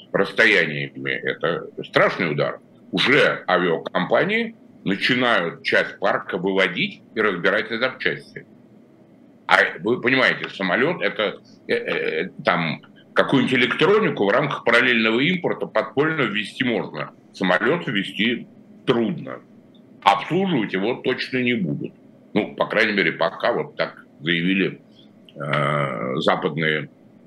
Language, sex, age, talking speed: Russian, male, 60-79, 110 wpm